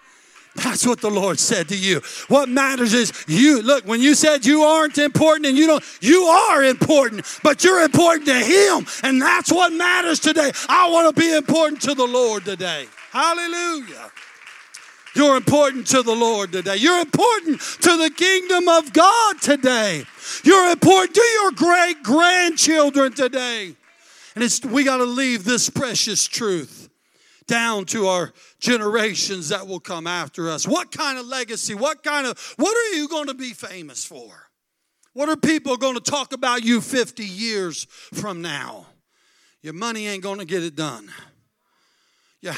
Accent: American